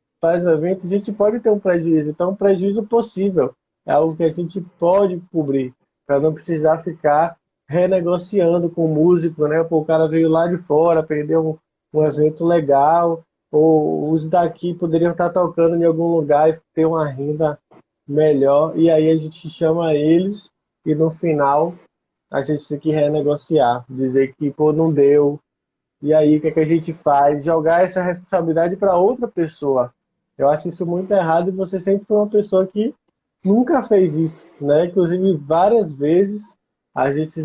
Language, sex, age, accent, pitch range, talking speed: Portuguese, male, 20-39, Brazilian, 155-185 Hz, 170 wpm